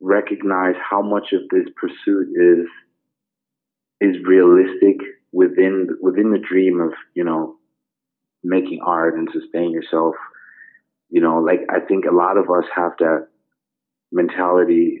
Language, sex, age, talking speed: English, male, 30-49, 130 wpm